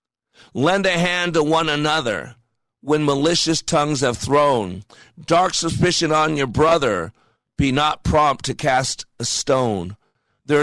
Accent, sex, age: American, male, 50-69